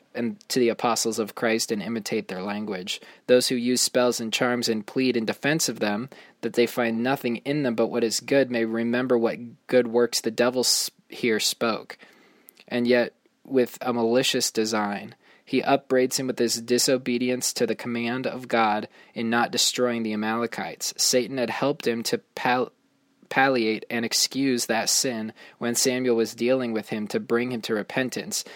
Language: English